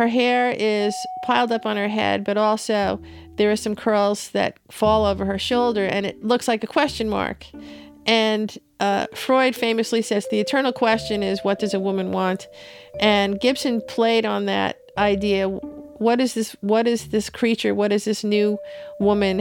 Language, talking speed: English, 175 wpm